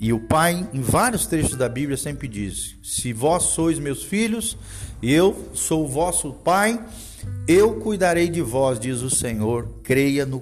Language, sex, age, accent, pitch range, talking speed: Portuguese, male, 50-69, Brazilian, 115-155 Hz, 165 wpm